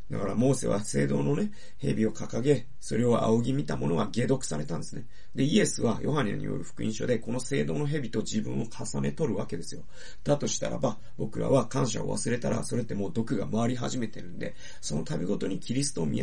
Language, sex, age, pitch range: Japanese, male, 40-59, 105-140 Hz